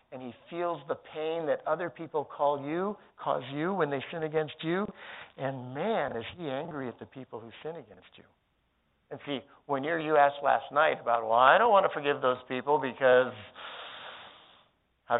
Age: 60-79